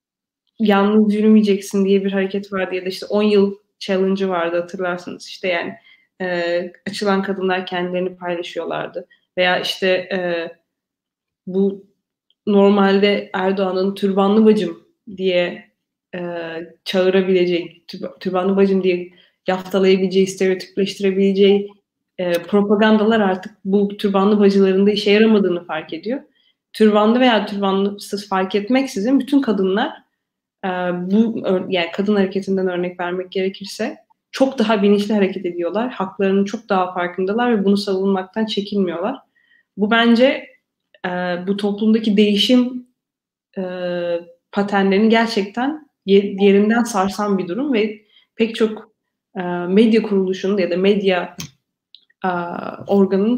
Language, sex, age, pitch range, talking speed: Turkish, female, 30-49, 185-215 Hz, 105 wpm